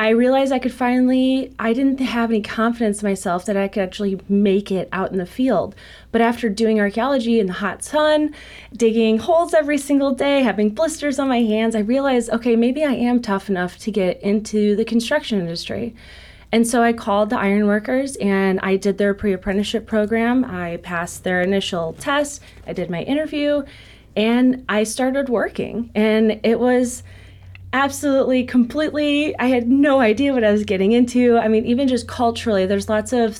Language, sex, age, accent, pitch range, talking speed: English, female, 20-39, American, 200-250 Hz, 185 wpm